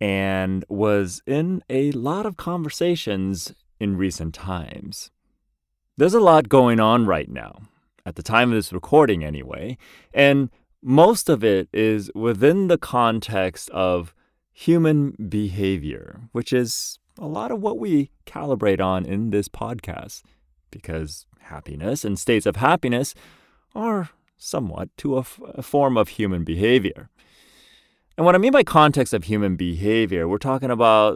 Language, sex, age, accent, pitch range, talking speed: English, male, 30-49, American, 95-155 Hz, 145 wpm